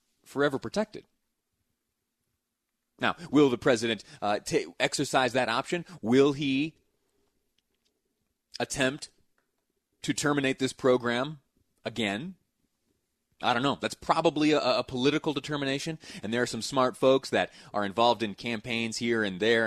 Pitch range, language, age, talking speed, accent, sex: 110-145 Hz, English, 30-49, 125 wpm, American, male